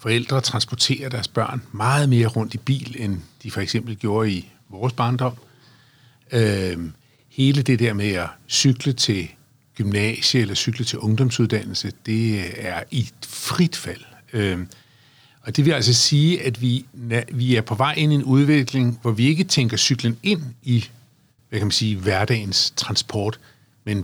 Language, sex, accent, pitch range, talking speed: Danish, male, native, 110-130 Hz, 165 wpm